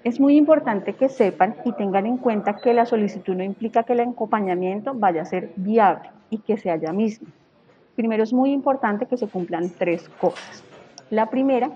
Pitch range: 195-245 Hz